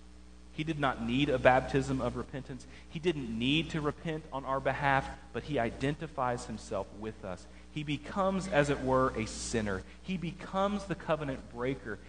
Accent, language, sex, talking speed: American, English, male, 170 wpm